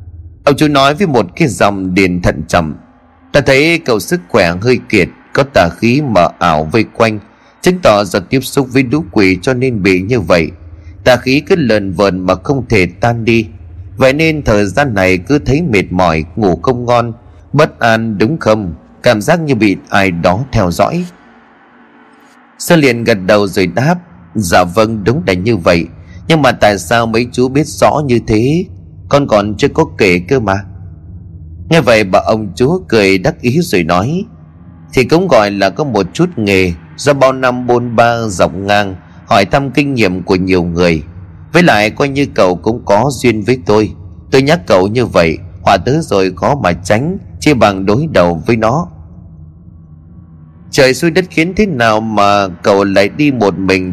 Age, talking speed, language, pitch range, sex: 30-49, 190 wpm, Vietnamese, 90-135 Hz, male